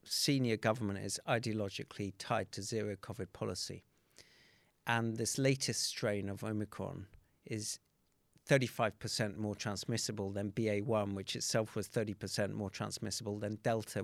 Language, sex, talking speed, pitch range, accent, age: English, male, 120 wpm, 105-125 Hz, British, 50-69